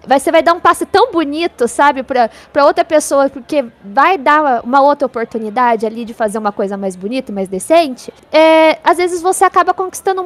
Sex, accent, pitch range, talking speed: female, Brazilian, 250-335 Hz, 185 wpm